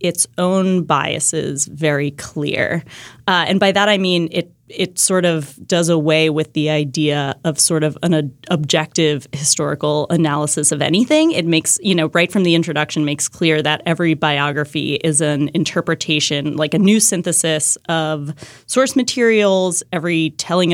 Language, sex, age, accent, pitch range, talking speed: English, female, 20-39, American, 155-185 Hz, 155 wpm